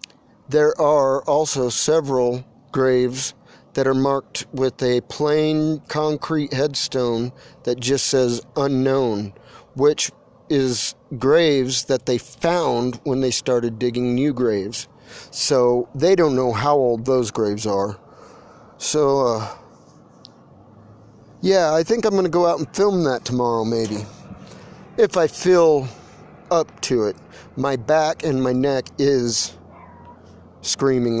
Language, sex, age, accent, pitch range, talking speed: English, male, 40-59, American, 120-150 Hz, 125 wpm